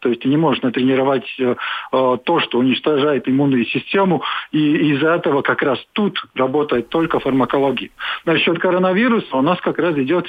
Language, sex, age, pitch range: Russian, male, 50-69, 140-170 Hz